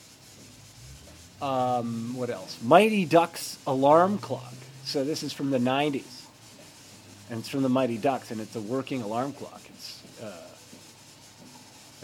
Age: 30-49